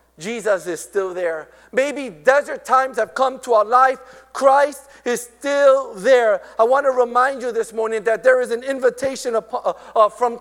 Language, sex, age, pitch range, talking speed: English, male, 50-69, 220-275 Hz, 165 wpm